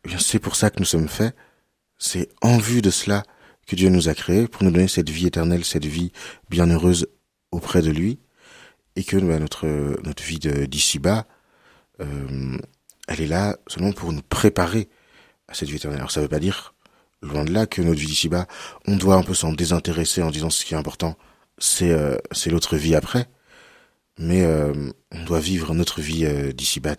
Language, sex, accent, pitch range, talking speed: French, male, French, 75-95 Hz, 180 wpm